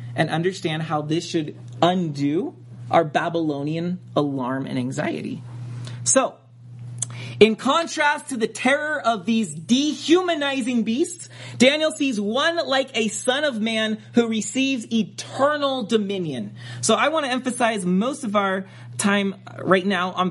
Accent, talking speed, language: American, 135 wpm, English